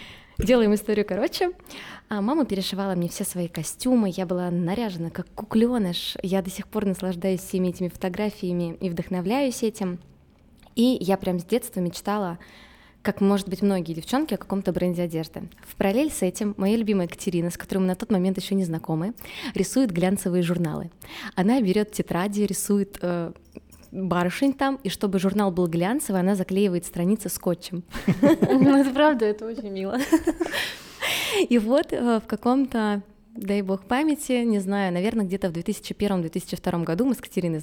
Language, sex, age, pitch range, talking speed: Russian, female, 20-39, 180-230 Hz, 155 wpm